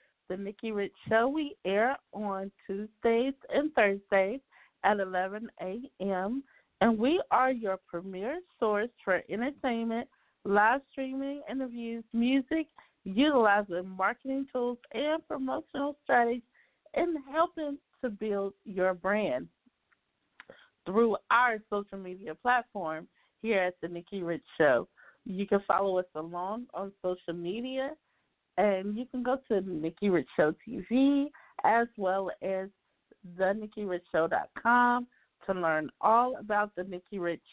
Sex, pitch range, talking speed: female, 195-255 Hz, 125 wpm